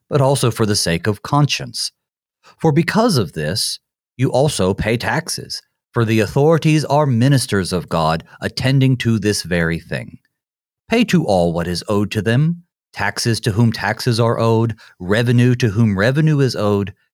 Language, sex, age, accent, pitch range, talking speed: English, male, 40-59, American, 110-160 Hz, 165 wpm